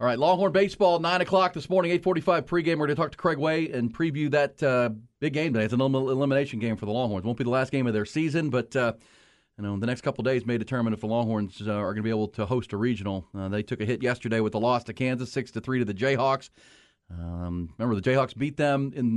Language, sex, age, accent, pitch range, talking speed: English, male, 40-59, American, 110-140 Hz, 270 wpm